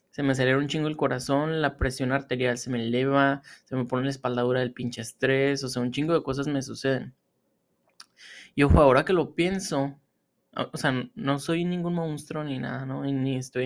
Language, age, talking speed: Spanish, 20-39, 200 wpm